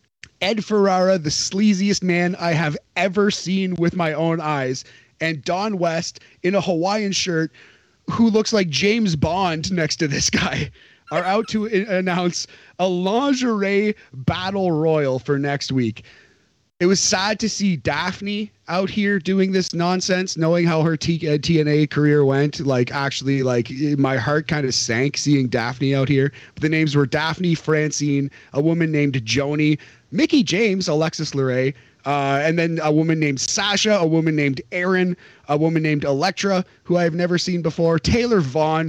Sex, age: male, 30-49